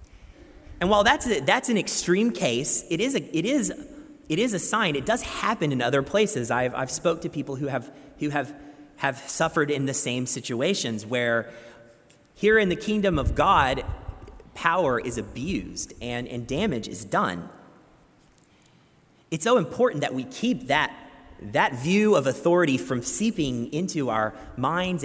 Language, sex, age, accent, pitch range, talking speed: English, male, 30-49, American, 125-180 Hz, 165 wpm